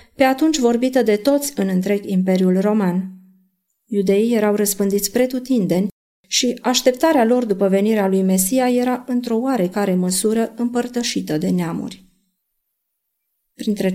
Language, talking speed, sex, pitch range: Romanian, 120 wpm, female, 195-245 Hz